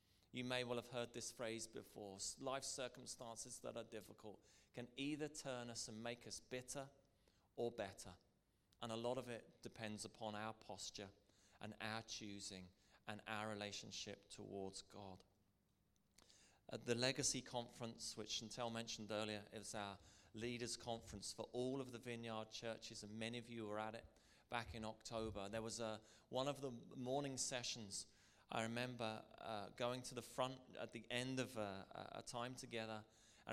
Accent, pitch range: British, 105-125 Hz